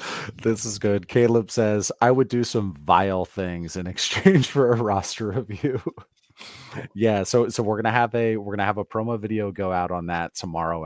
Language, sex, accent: English, male, American